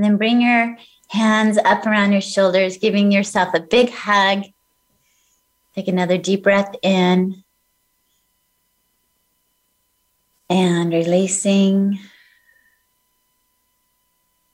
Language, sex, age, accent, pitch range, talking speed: English, female, 30-49, American, 165-200 Hz, 85 wpm